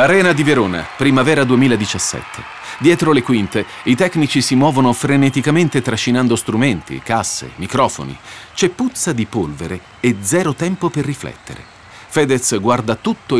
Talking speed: 130 wpm